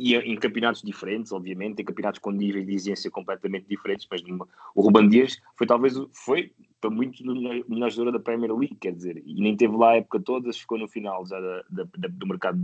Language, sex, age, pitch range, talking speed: Portuguese, male, 20-39, 110-135 Hz, 230 wpm